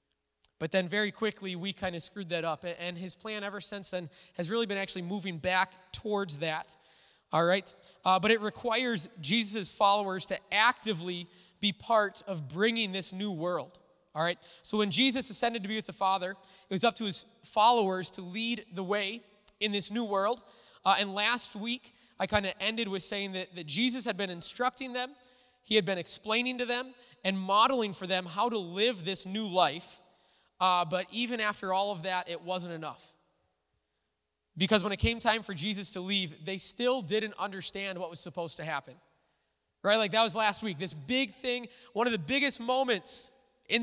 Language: English